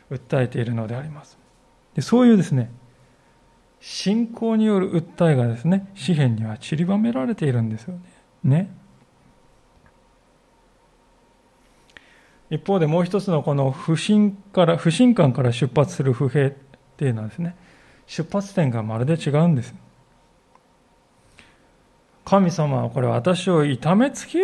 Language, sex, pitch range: Japanese, male, 135-205 Hz